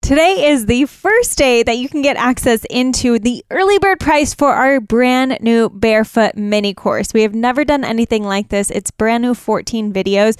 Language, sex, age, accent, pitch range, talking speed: English, female, 10-29, American, 210-255 Hz, 195 wpm